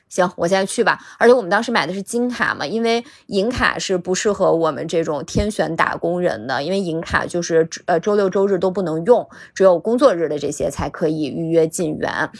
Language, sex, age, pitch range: Chinese, female, 20-39, 165-215 Hz